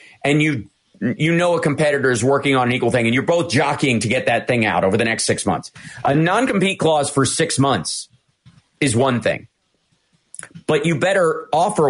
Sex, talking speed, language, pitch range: male, 195 wpm, English, 120-145 Hz